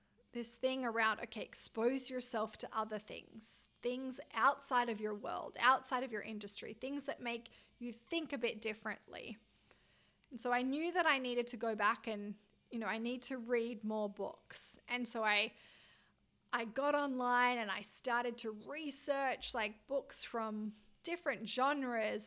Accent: Australian